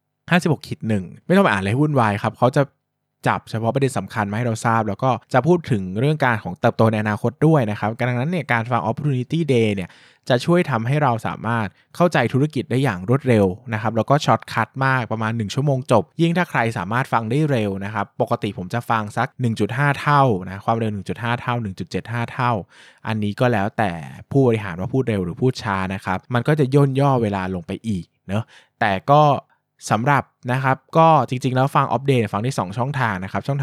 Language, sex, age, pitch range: Thai, male, 20-39, 100-130 Hz